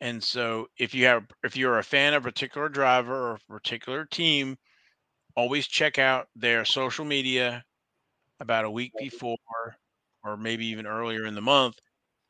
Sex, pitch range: male, 115-135 Hz